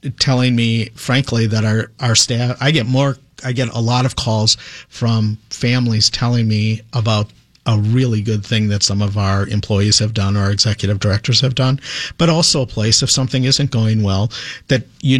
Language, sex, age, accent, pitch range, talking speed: English, male, 50-69, American, 110-130 Hz, 190 wpm